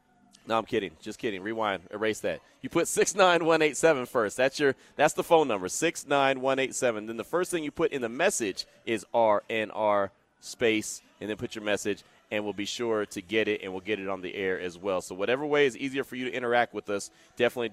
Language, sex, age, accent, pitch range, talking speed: English, male, 30-49, American, 110-150 Hz, 230 wpm